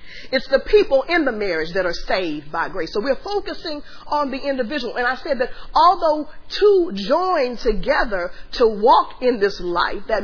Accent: American